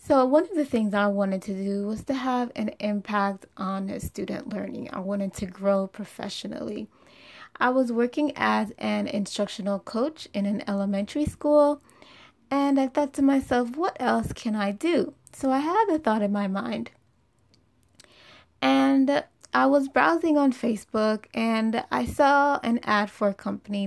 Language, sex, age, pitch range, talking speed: English, female, 20-39, 205-265 Hz, 165 wpm